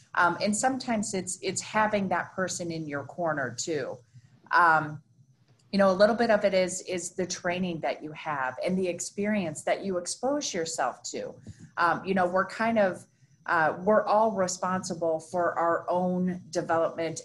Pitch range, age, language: 155-190 Hz, 30-49, English